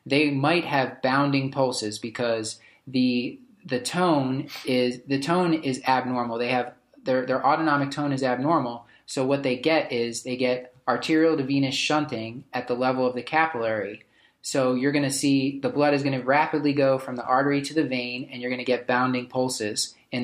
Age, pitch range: 30-49, 125-145 Hz